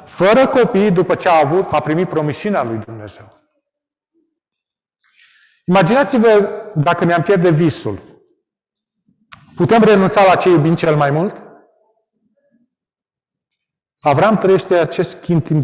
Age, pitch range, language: 40-59, 150-220 Hz, Romanian